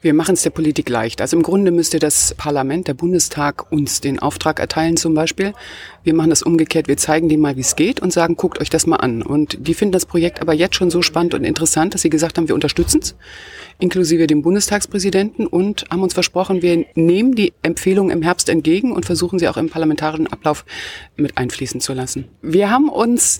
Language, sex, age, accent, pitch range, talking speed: German, female, 40-59, German, 160-190 Hz, 220 wpm